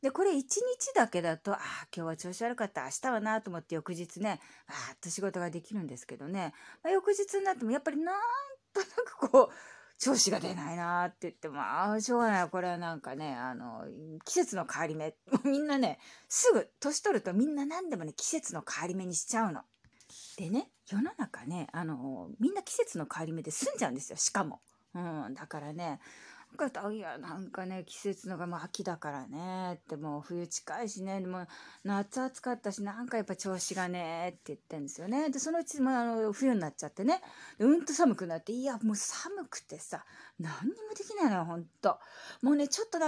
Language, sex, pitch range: Japanese, female, 175-270 Hz